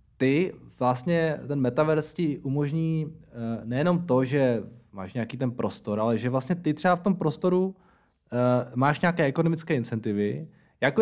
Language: Czech